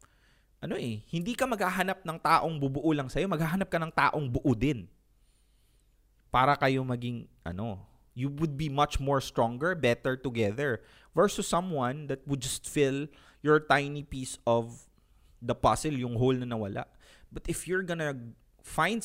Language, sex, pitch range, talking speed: English, male, 115-165 Hz, 155 wpm